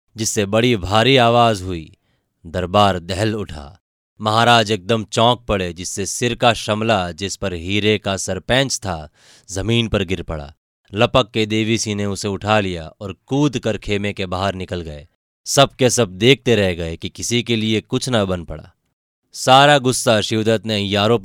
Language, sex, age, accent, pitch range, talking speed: Hindi, male, 30-49, native, 95-115 Hz, 170 wpm